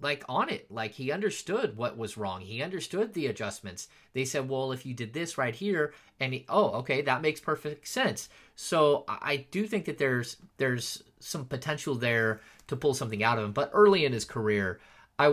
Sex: male